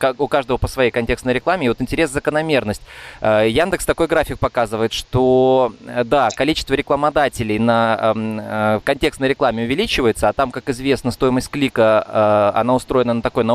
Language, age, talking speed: Russian, 20-39, 145 wpm